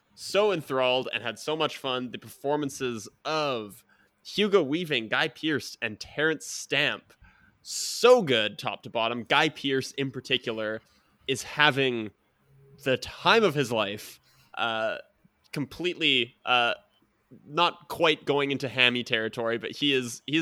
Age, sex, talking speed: 20-39, male, 135 wpm